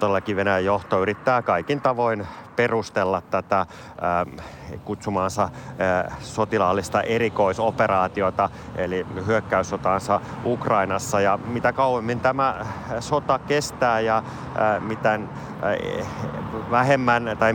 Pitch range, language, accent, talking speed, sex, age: 95-115 Hz, Finnish, native, 95 wpm, male, 30-49